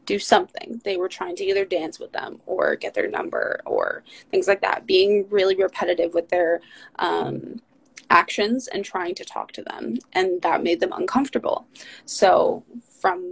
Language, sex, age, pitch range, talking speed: English, female, 20-39, 185-265 Hz, 170 wpm